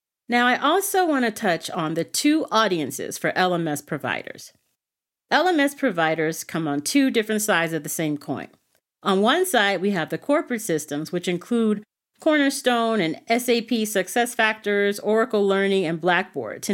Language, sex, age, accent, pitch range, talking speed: English, female, 40-59, American, 160-220 Hz, 155 wpm